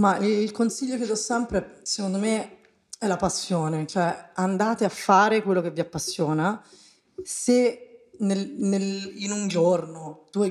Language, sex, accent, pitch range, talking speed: Italian, female, native, 175-210 Hz, 135 wpm